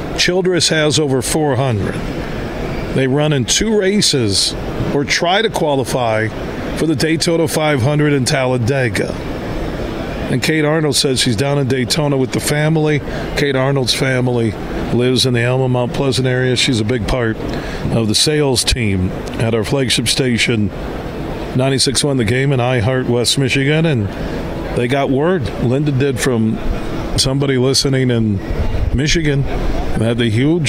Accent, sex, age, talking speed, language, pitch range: American, male, 50-69, 145 wpm, English, 120-145 Hz